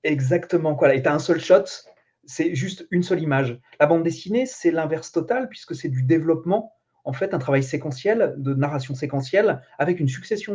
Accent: French